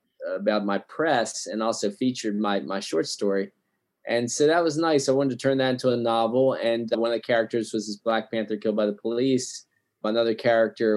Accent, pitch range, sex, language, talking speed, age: American, 105-125 Hz, male, English, 210 wpm, 20-39